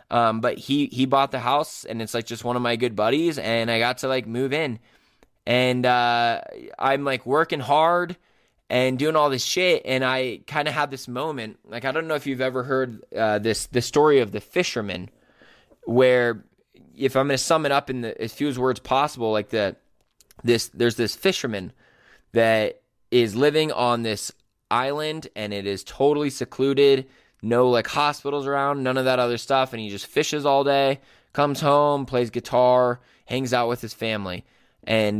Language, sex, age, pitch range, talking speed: English, male, 20-39, 115-145 Hz, 190 wpm